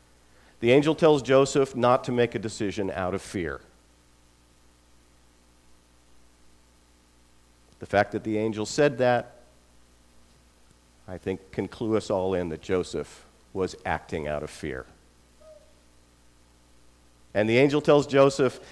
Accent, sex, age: American, male, 50-69